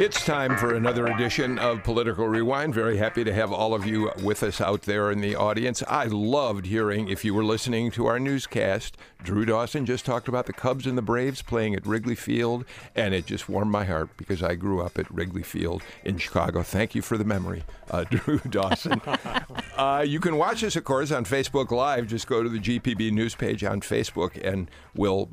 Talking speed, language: 215 wpm, English